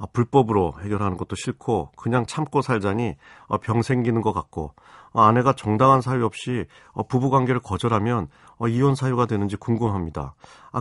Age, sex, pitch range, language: 40-59, male, 95-125 Hz, Korean